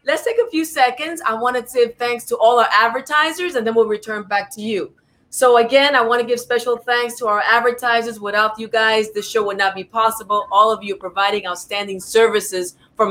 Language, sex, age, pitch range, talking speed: English, female, 30-49, 210-250 Hz, 220 wpm